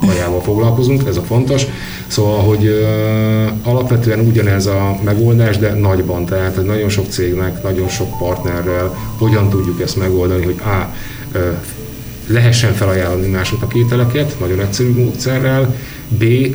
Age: 30-49